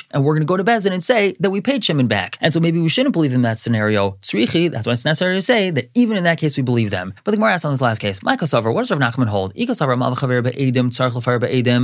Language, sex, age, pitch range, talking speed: English, male, 20-39, 125-165 Hz, 265 wpm